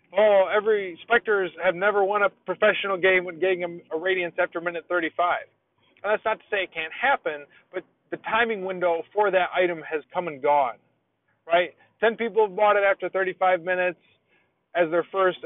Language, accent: English, American